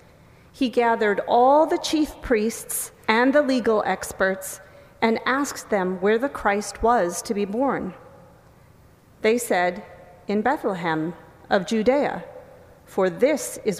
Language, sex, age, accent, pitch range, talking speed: English, female, 40-59, American, 185-245 Hz, 125 wpm